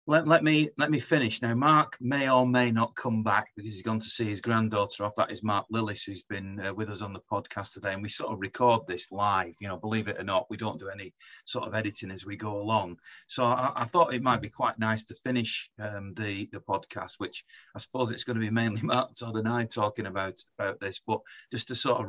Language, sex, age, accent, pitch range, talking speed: English, male, 40-59, British, 105-120 Hz, 260 wpm